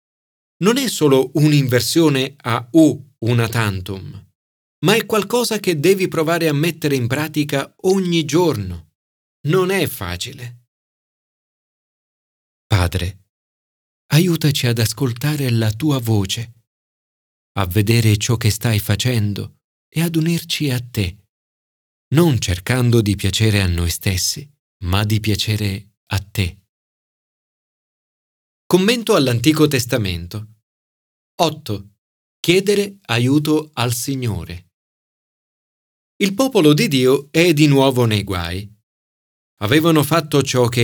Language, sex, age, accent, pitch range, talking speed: Italian, male, 40-59, native, 105-155 Hz, 110 wpm